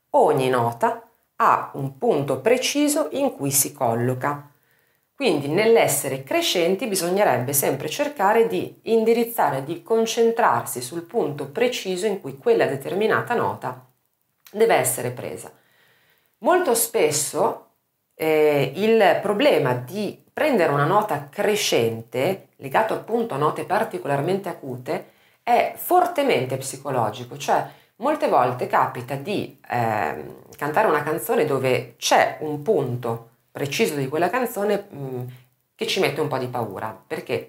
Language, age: Italian, 40-59